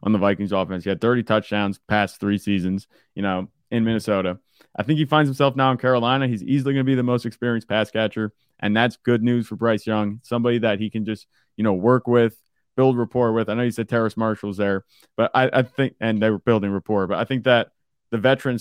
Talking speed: 240 wpm